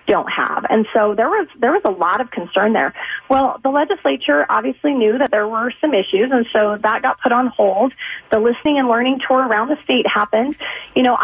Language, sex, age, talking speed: English, female, 30-49, 220 wpm